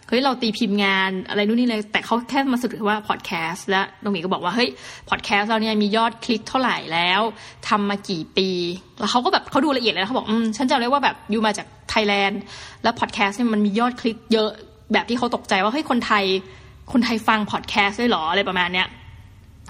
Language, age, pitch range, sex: Thai, 20-39, 200-240 Hz, female